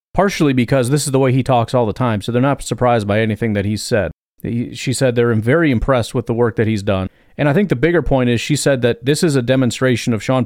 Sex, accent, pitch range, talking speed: male, American, 110-140 Hz, 270 wpm